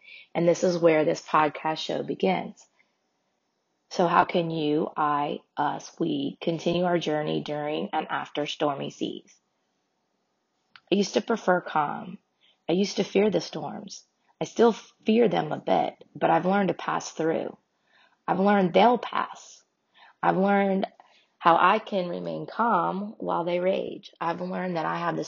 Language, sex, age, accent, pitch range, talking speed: English, female, 20-39, American, 160-200 Hz, 155 wpm